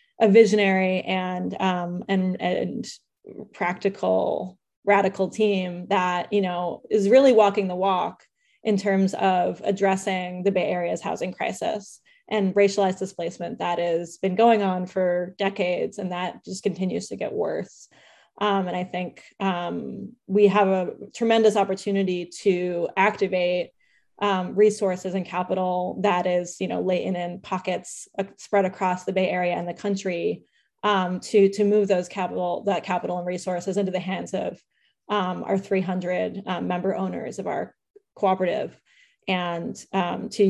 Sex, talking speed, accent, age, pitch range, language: female, 150 wpm, American, 20-39, 180-205 Hz, English